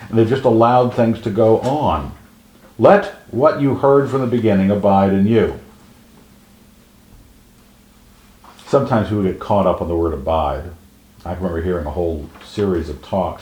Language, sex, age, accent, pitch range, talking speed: English, male, 60-79, American, 85-115 Hz, 155 wpm